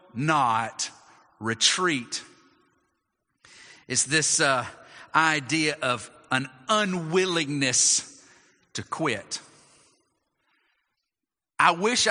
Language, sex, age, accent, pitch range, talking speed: English, male, 40-59, American, 120-160 Hz, 65 wpm